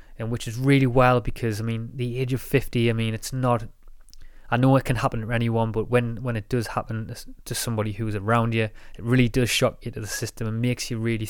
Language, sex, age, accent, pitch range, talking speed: English, male, 20-39, British, 110-130 Hz, 245 wpm